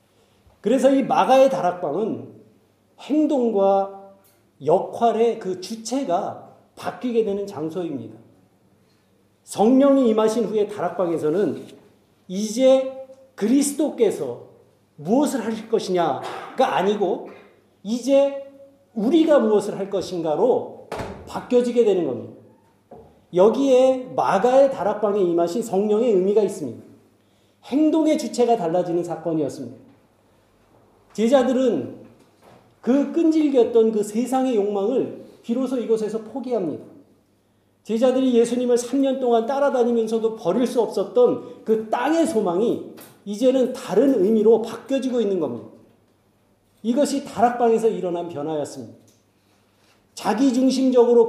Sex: male